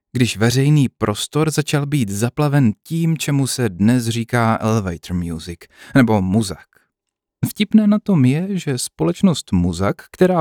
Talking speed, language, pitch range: 135 wpm, Czech, 105-140 Hz